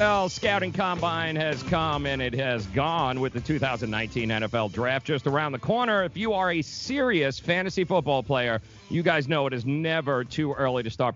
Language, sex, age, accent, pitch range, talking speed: English, male, 40-59, American, 120-160 Hz, 190 wpm